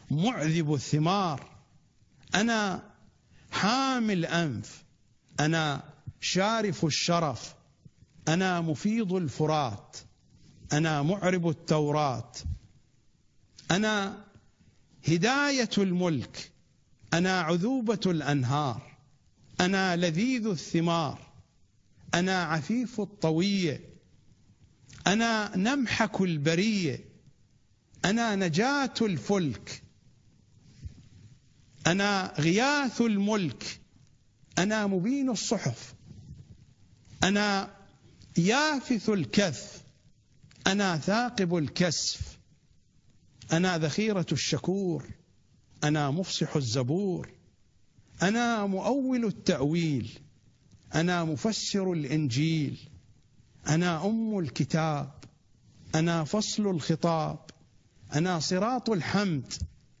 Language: English